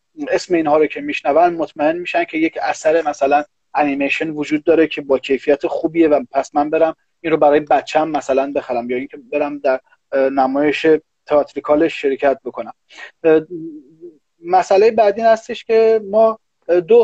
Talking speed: 150 wpm